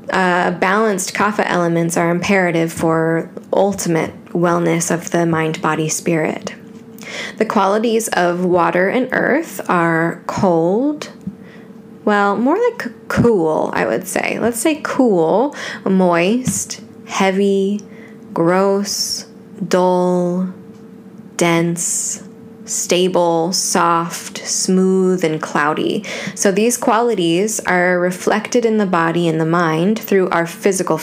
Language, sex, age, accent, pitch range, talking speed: English, female, 10-29, American, 175-220 Hz, 110 wpm